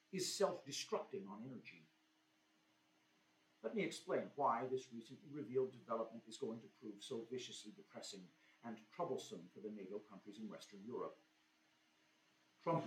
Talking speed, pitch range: 135 wpm, 115-175 Hz